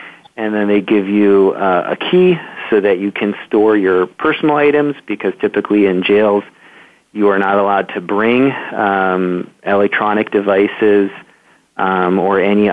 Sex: male